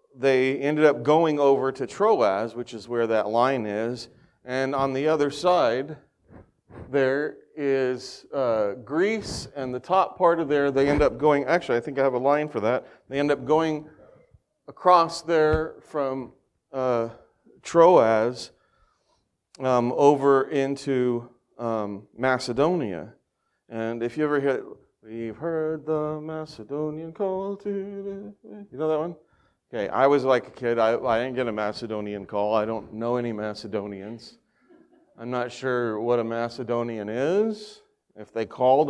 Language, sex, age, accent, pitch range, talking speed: English, male, 40-59, American, 115-150 Hz, 155 wpm